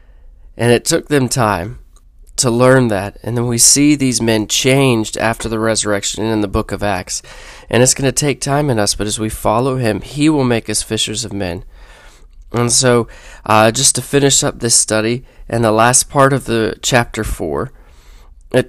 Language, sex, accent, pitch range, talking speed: English, male, American, 105-130 Hz, 200 wpm